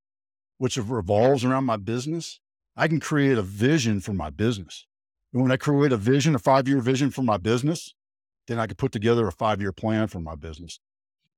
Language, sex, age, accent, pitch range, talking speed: English, male, 50-69, American, 100-165 Hz, 190 wpm